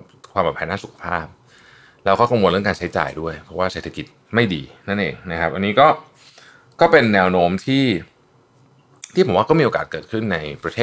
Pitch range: 90-130 Hz